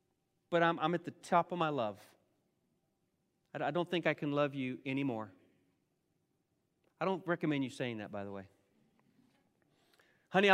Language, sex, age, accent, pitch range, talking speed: English, male, 40-59, American, 165-215 Hz, 155 wpm